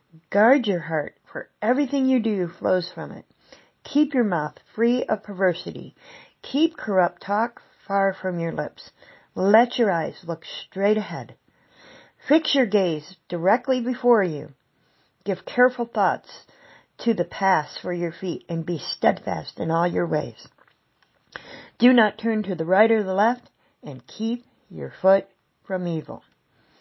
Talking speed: 150 wpm